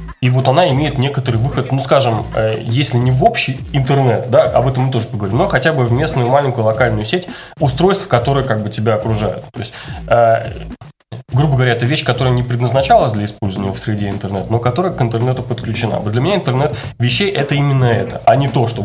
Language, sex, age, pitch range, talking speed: Russian, male, 20-39, 115-135 Hz, 205 wpm